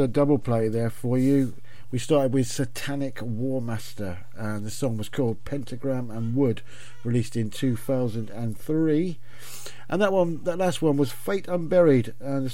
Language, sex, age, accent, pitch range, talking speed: English, male, 50-69, British, 120-140 Hz, 160 wpm